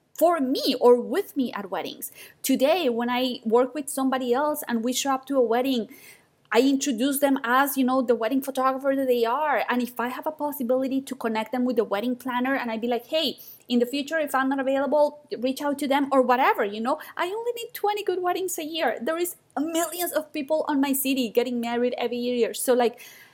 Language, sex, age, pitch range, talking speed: English, female, 20-39, 215-275 Hz, 225 wpm